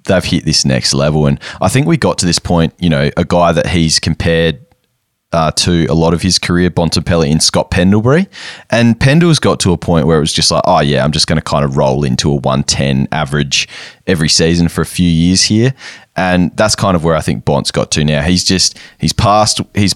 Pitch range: 75-95 Hz